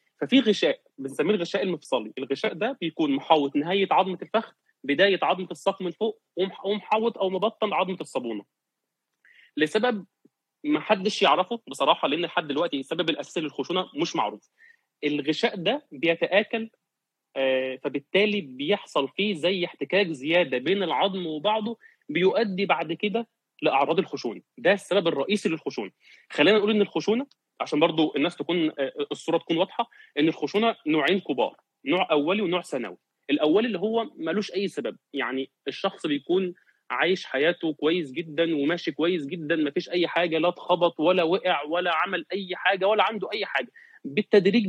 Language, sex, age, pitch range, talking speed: Arabic, male, 30-49, 165-210 Hz, 145 wpm